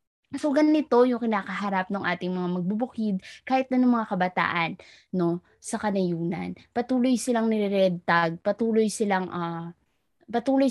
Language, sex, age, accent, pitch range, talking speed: Filipino, female, 20-39, native, 190-240 Hz, 135 wpm